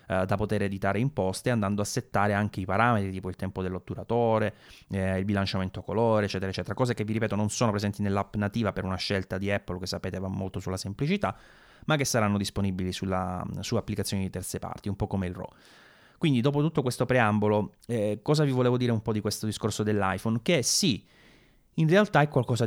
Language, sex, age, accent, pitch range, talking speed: English, male, 30-49, Italian, 100-115 Hz, 200 wpm